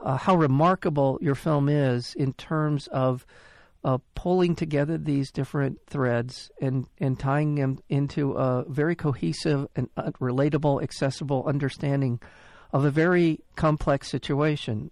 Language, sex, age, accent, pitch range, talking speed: English, male, 50-69, American, 125-150 Hz, 135 wpm